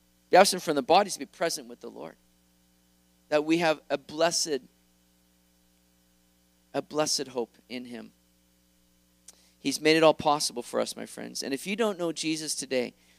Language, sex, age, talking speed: English, male, 40-59, 165 wpm